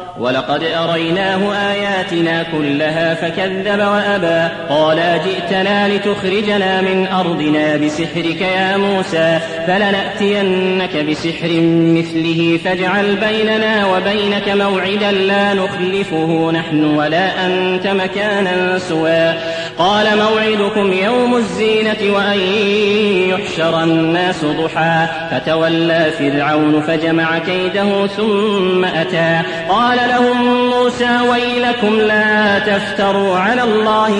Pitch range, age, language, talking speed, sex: 165-205 Hz, 30-49, Arabic, 90 wpm, male